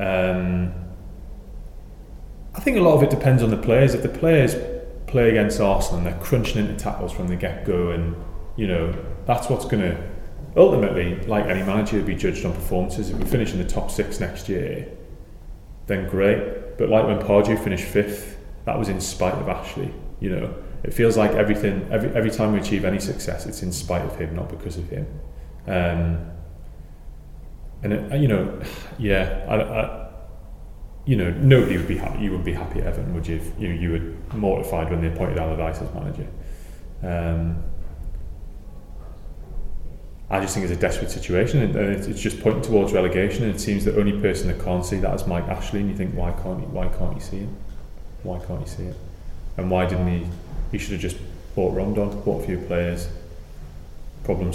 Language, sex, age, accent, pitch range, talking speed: English, male, 30-49, British, 85-105 Hz, 185 wpm